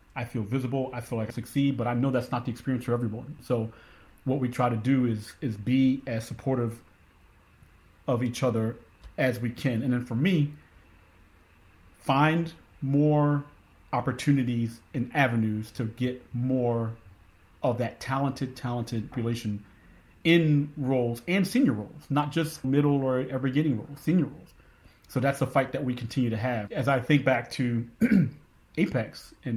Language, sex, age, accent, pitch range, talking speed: English, male, 40-59, American, 115-140 Hz, 165 wpm